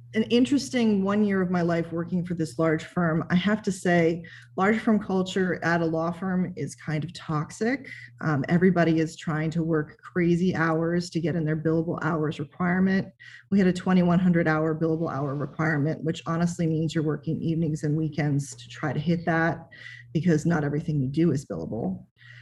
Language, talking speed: English, 185 wpm